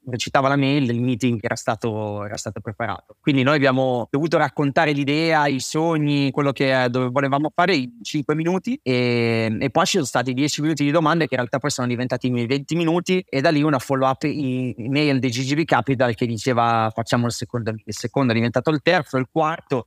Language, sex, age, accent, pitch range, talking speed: Italian, male, 30-49, native, 120-145 Hz, 210 wpm